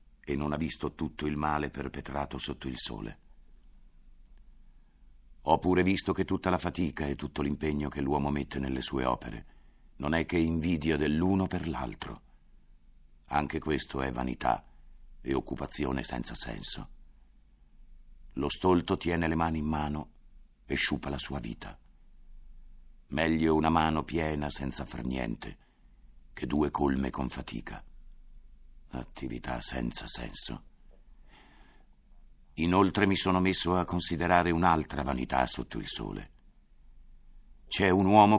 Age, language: 50-69, Italian